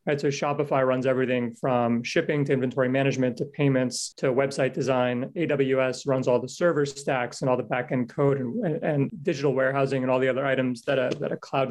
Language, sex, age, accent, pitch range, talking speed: English, male, 30-49, American, 130-150 Hz, 210 wpm